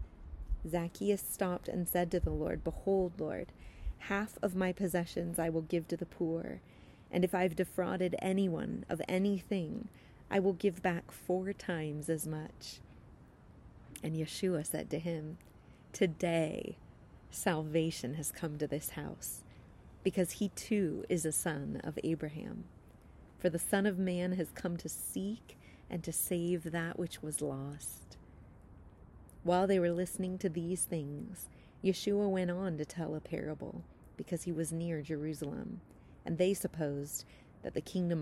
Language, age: English, 30-49